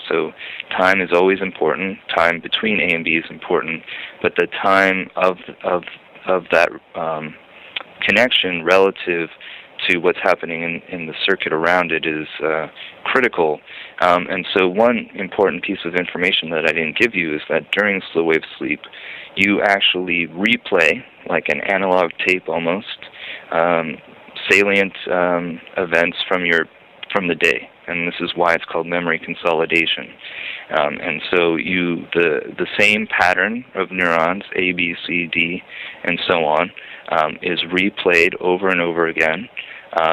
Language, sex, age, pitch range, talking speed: English, male, 30-49, 85-95 Hz, 155 wpm